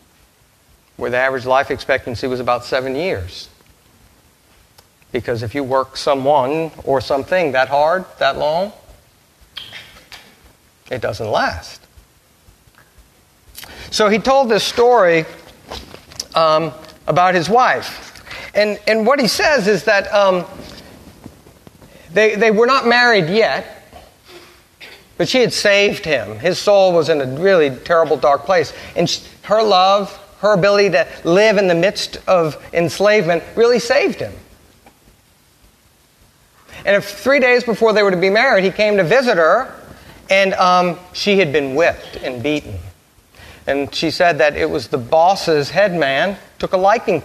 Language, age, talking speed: English, 50-69, 140 wpm